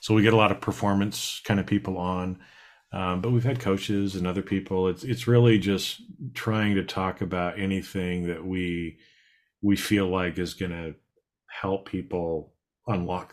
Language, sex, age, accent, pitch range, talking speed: English, male, 40-59, American, 85-100 Hz, 170 wpm